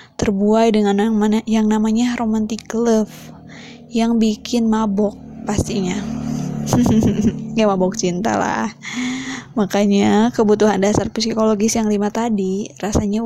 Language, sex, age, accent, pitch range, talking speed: Indonesian, female, 20-39, native, 210-235 Hz, 110 wpm